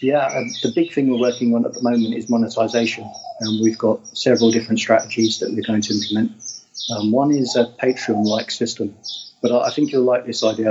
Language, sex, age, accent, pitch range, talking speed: English, male, 40-59, British, 110-125 Hz, 200 wpm